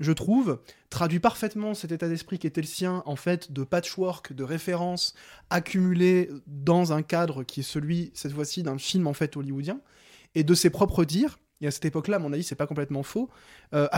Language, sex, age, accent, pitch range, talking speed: French, male, 20-39, French, 140-180 Hz, 205 wpm